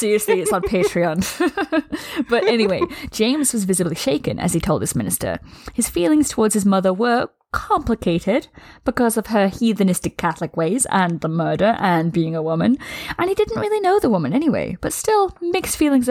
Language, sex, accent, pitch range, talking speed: English, female, British, 180-255 Hz, 175 wpm